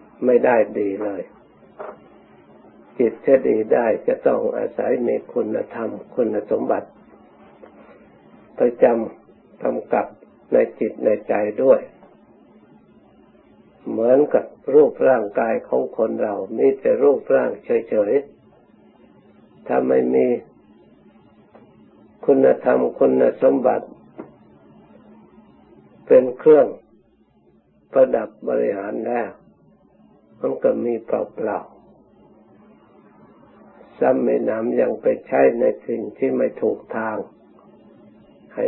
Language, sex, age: Thai, male, 60-79